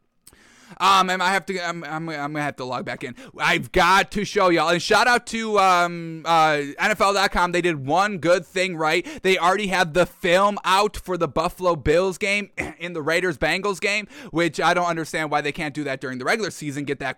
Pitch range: 155-200 Hz